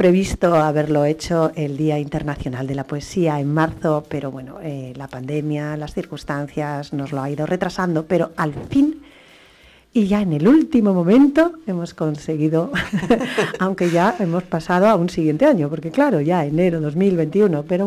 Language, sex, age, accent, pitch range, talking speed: English, female, 40-59, Spanish, 155-190 Hz, 160 wpm